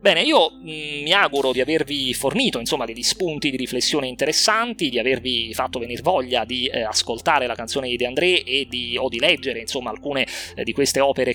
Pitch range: 130-175 Hz